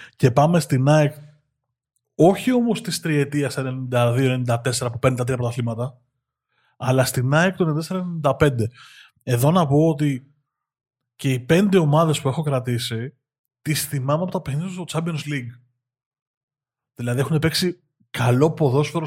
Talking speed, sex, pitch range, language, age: 135 wpm, male, 125-155 Hz, Greek, 20-39